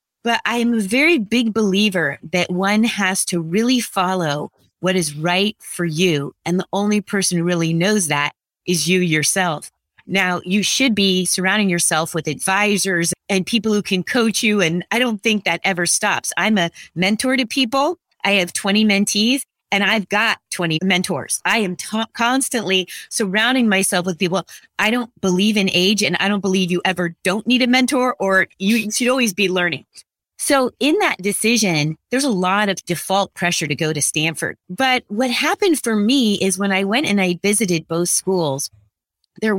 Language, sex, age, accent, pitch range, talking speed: English, female, 30-49, American, 175-225 Hz, 185 wpm